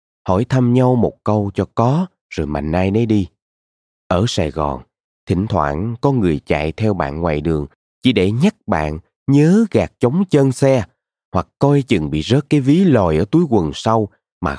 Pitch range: 80-125 Hz